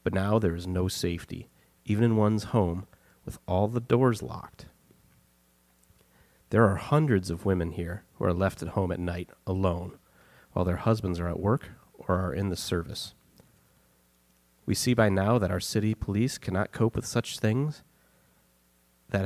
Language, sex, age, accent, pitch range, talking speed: English, male, 30-49, American, 85-105 Hz, 170 wpm